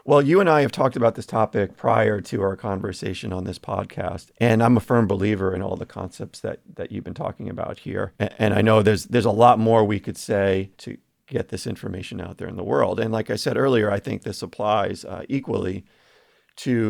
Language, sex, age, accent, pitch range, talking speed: English, male, 30-49, American, 95-115 Hz, 225 wpm